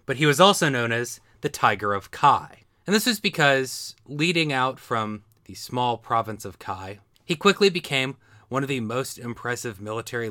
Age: 30-49